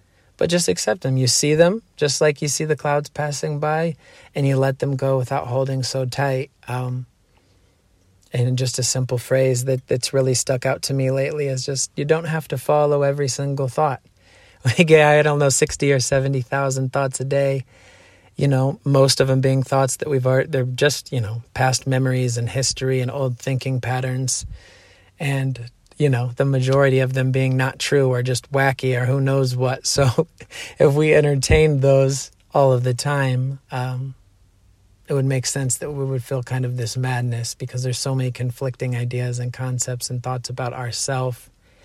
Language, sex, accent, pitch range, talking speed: English, male, American, 125-140 Hz, 190 wpm